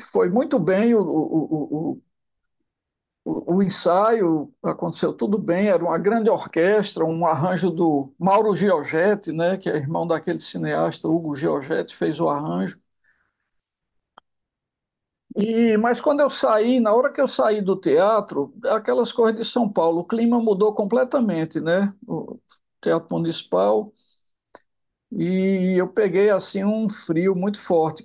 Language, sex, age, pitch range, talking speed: Portuguese, male, 60-79, 170-230 Hz, 140 wpm